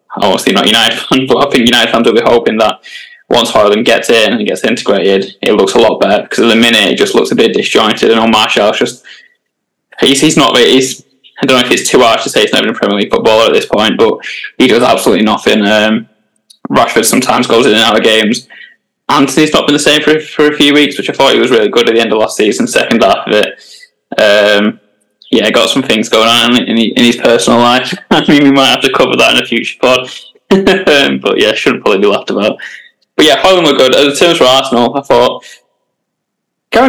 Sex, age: male, 10-29